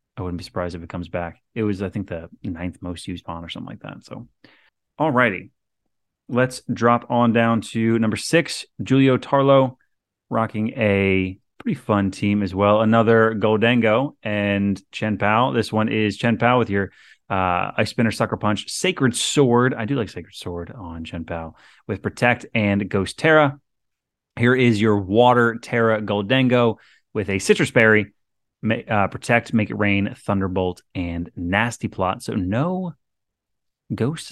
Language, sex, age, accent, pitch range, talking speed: English, male, 30-49, American, 95-120 Hz, 165 wpm